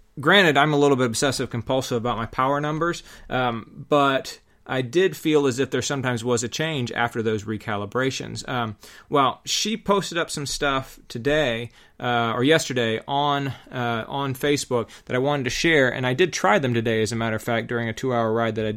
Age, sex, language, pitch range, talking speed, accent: 30-49, male, English, 115-145 Hz, 200 wpm, American